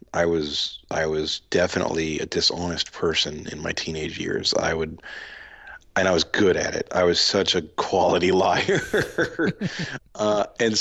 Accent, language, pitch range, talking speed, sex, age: American, English, 80-95 Hz, 155 wpm, male, 40-59